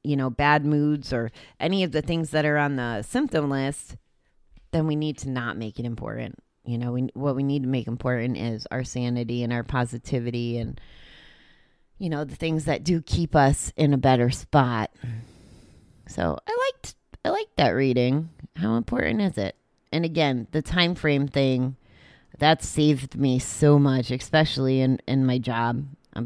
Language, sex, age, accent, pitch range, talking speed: English, female, 30-49, American, 125-155 Hz, 185 wpm